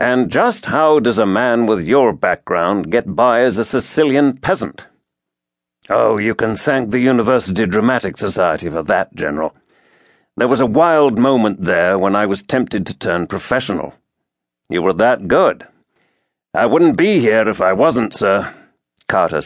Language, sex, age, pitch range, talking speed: English, male, 50-69, 100-135 Hz, 160 wpm